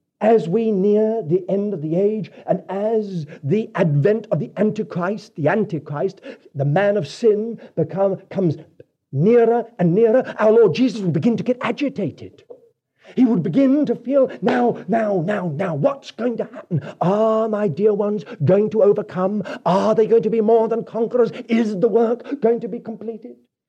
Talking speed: 175 wpm